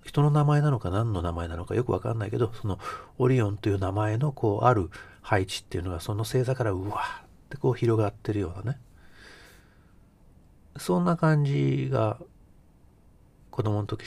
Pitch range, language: 85-125 Hz, Japanese